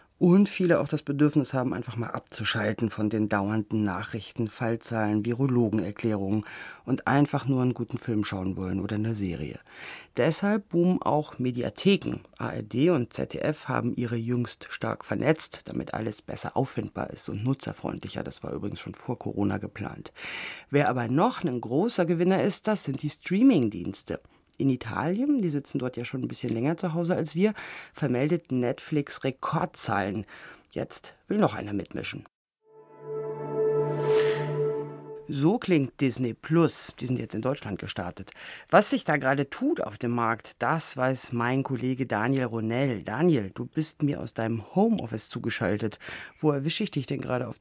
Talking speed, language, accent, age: 160 wpm, German, German, 40-59